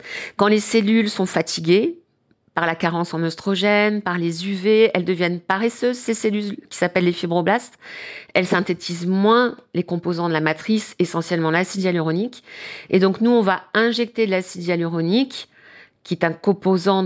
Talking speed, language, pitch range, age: 160 wpm, French, 175-225 Hz, 40-59